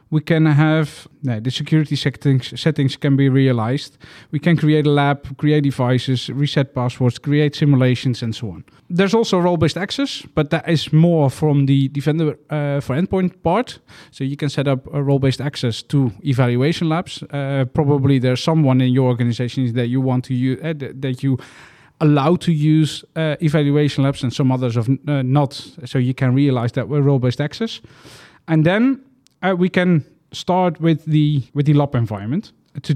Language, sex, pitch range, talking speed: English, male, 135-165 Hz, 180 wpm